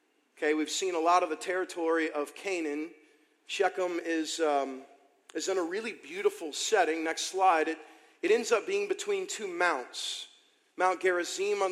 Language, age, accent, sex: English, 40-59, American, male